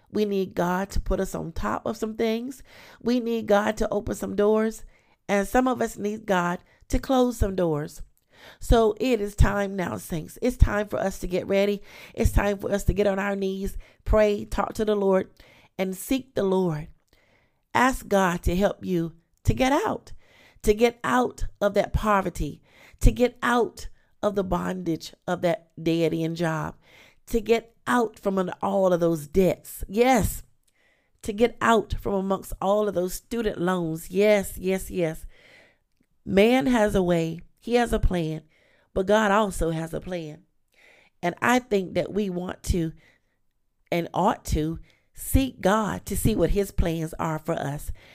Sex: female